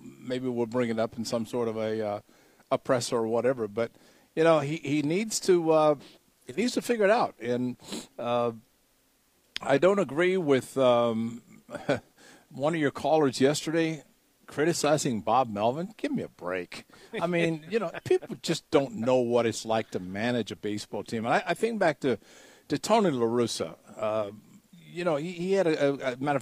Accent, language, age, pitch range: American, English, 50-69, 120-165 Hz